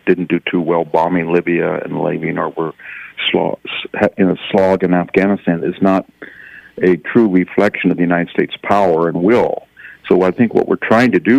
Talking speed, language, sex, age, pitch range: 185 wpm, English, male, 60-79, 85-90 Hz